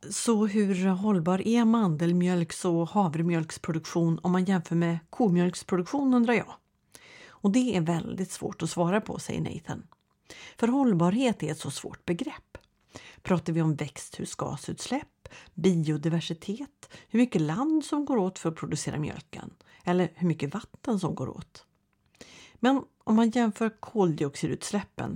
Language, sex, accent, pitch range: Swedish, female, native, 165-215 Hz